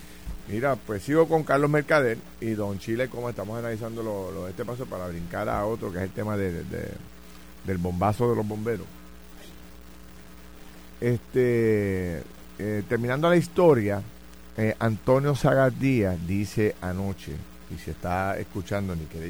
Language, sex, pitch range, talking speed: Spanish, male, 85-115 Hz, 150 wpm